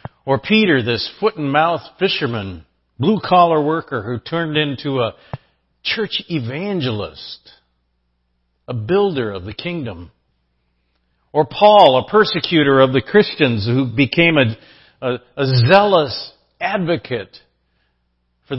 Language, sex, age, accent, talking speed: English, male, 50-69, American, 105 wpm